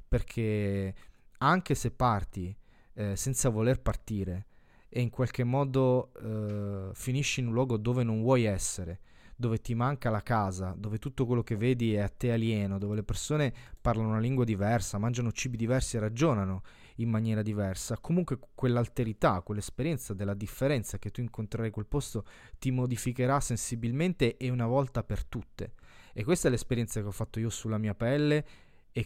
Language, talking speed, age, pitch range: Italian, 165 wpm, 20-39, 105-125 Hz